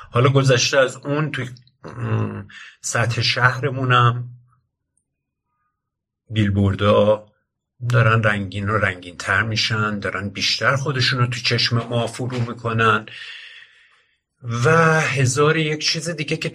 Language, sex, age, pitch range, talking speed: Persian, male, 50-69, 105-130 Hz, 110 wpm